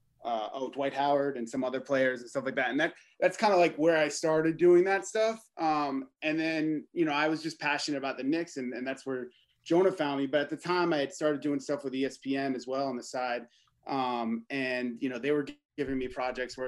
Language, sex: English, male